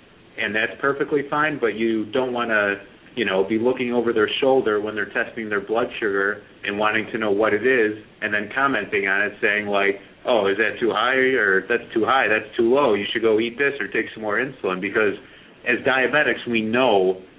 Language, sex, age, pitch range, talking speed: English, male, 30-49, 95-115 Hz, 215 wpm